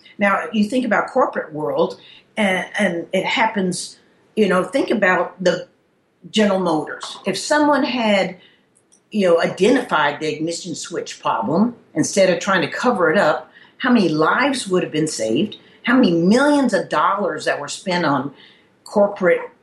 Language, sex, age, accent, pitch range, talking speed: English, female, 50-69, American, 165-205 Hz, 155 wpm